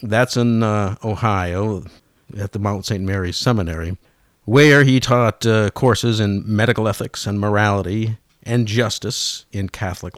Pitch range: 95-120 Hz